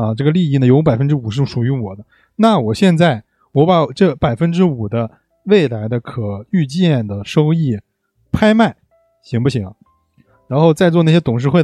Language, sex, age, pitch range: Chinese, male, 20-39, 120-185 Hz